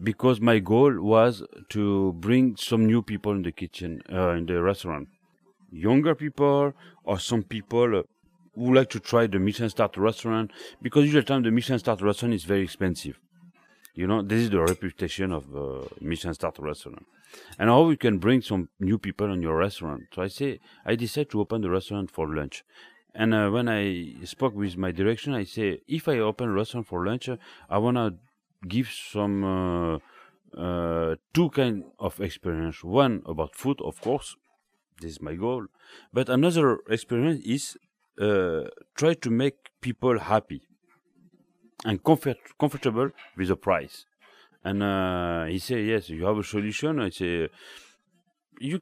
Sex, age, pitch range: male, 30-49, 95-130 Hz